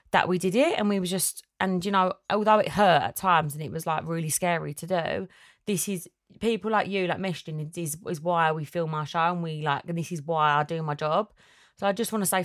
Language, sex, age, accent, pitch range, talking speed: English, female, 20-39, British, 165-200 Hz, 265 wpm